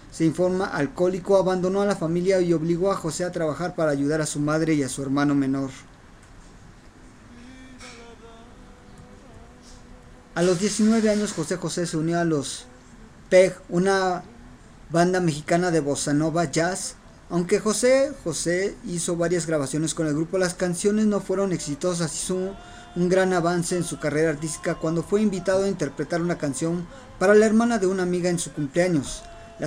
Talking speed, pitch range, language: 165 wpm, 160-195 Hz, Spanish